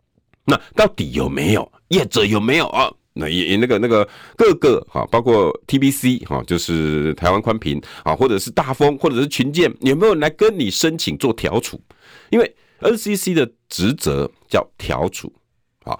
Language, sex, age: Chinese, male, 50-69